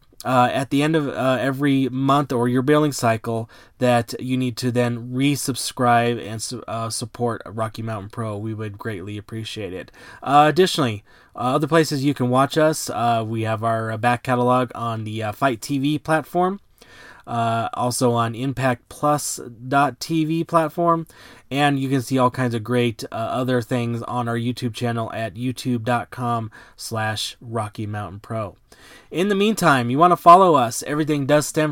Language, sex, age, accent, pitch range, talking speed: English, male, 20-39, American, 120-150 Hz, 170 wpm